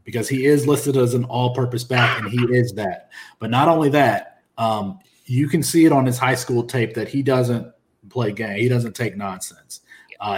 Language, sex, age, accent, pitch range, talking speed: English, male, 40-59, American, 120-145 Hz, 210 wpm